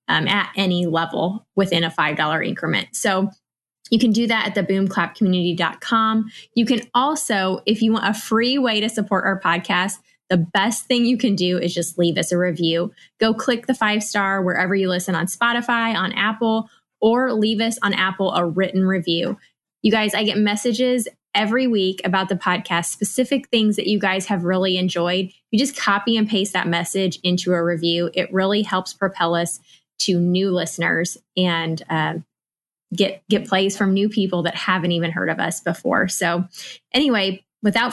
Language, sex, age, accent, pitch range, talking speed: English, female, 20-39, American, 180-225 Hz, 180 wpm